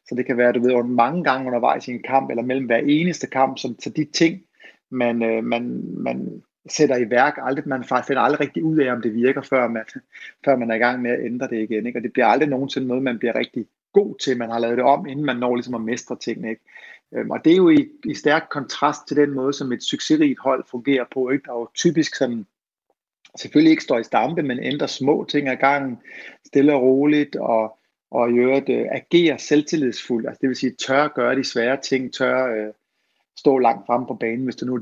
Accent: native